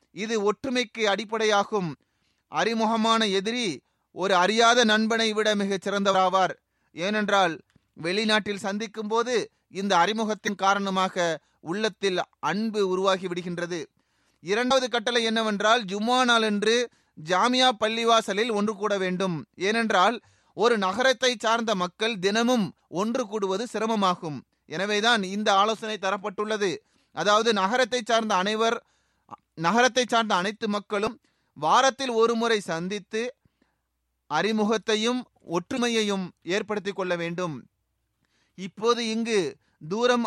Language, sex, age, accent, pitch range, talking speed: Tamil, male, 30-49, native, 190-230 Hz, 90 wpm